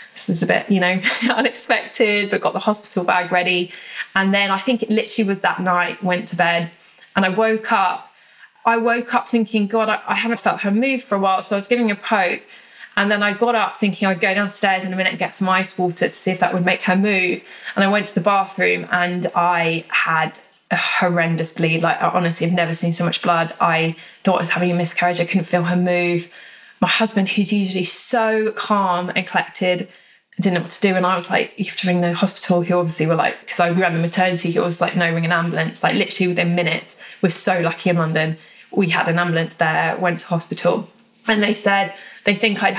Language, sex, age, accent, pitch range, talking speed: English, female, 20-39, British, 175-205 Hz, 235 wpm